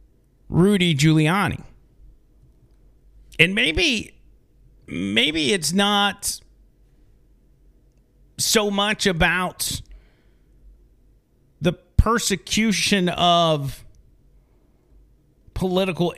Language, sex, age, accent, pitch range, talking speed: English, male, 40-59, American, 140-195 Hz, 50 wpm